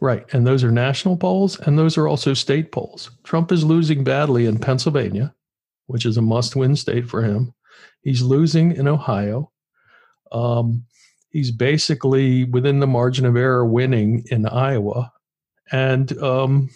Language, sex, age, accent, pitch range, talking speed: English, male, 50-69, American, 115-140 Hz, 155 wpm